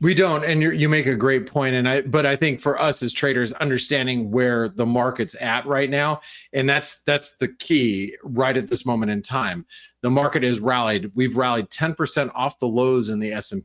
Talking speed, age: 225 wpm, 30-49